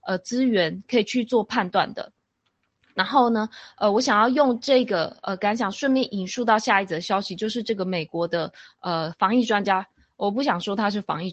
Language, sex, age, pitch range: Chinese, female, 20-39, 190-250 Hz